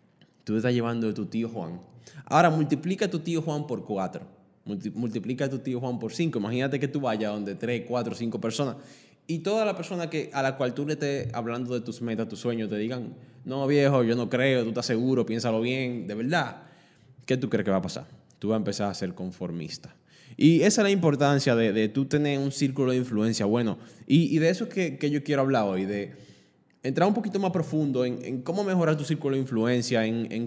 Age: 20-39